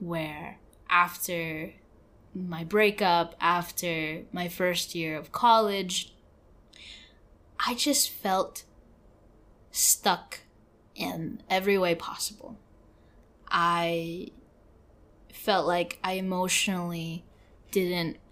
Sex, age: female, 10-29